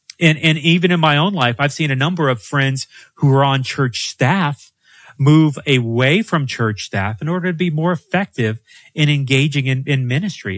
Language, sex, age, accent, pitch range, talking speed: English, male, 30-49, American, 120-165 Hz, 195 wpm